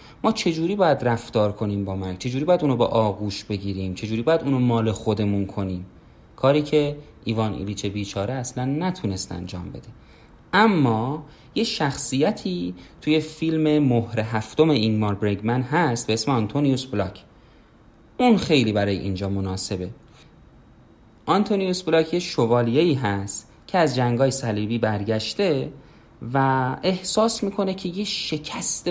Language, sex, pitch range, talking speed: Persian, male, 105-150 Hz, 135 wpm